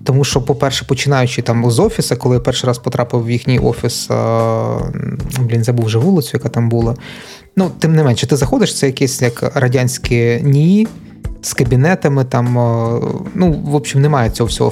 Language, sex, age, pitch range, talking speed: Ukrainian, male, 20-39, 120-150 Hz, 175 wpm